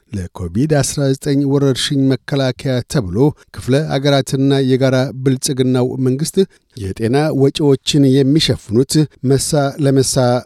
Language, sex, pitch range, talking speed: Amharic, male, 115-140 Hz, 85 wpm